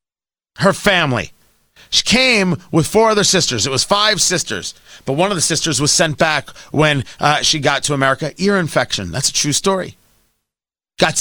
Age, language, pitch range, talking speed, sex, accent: 40-59, English, 150-245 Hz, 175 wpm, male, American